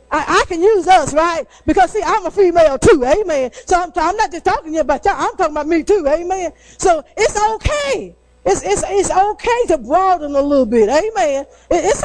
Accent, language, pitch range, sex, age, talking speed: American, English, 285-370 Hz, female, 40-59, 215 wpm